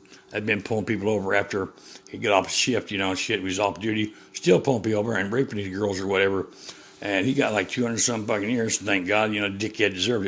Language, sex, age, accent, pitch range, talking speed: English, male, 60-79, American, 95-115 Hz, 250 wpm